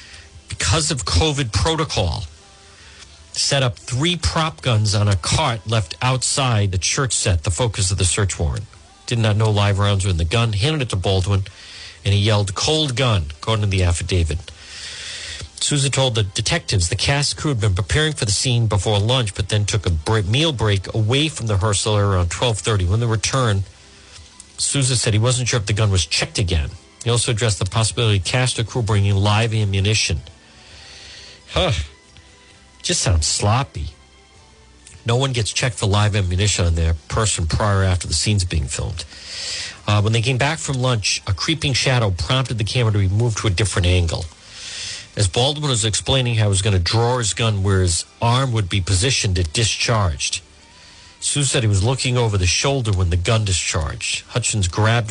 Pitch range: 95-120 Hz